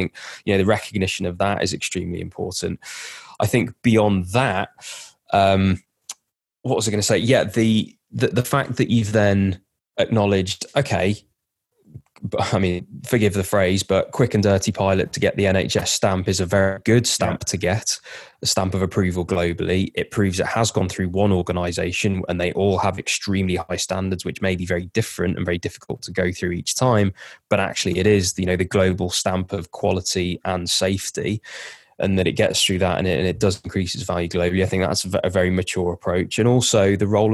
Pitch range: 90-105 Hz